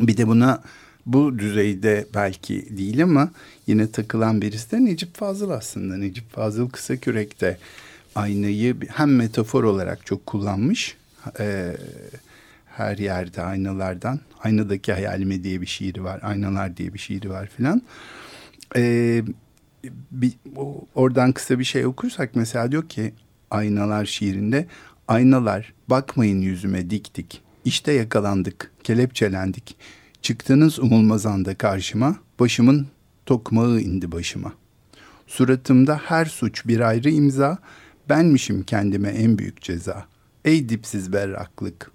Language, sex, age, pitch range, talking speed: Turkish, male, 50-69, 100-130 Hz, 115 wpm